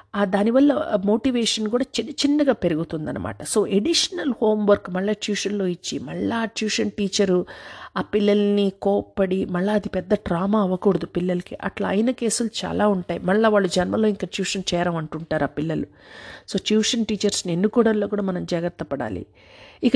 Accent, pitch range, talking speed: native, 185-230 Hz, 135 wpm